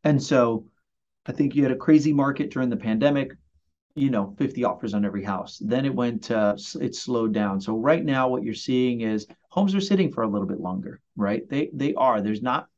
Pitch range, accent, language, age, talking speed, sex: 110-150 Hz, American, English, 30-49, 220 wpm, male